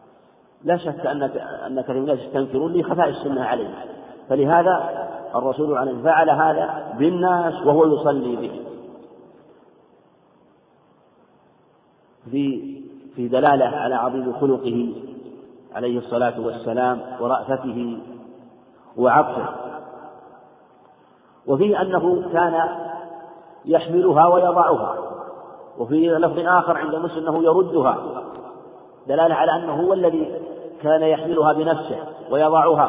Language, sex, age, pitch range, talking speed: Arabic, male, 50-69, 140-170 Hz, 95 wpm